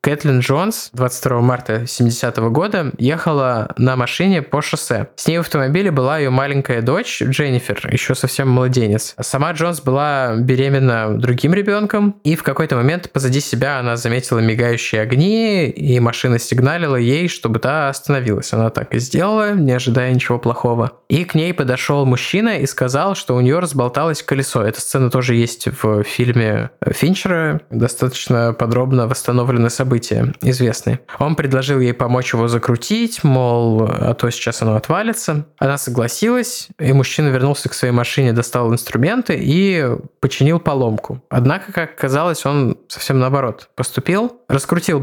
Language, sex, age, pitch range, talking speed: Russian, male, 20-39, 120-155 Hz, 150 wpm